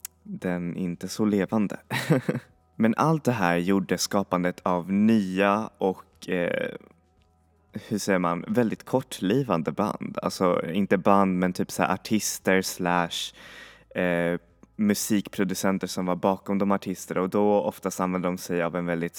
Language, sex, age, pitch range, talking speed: Swedish, male, 20-39, 85-100 Hz, 145 wpm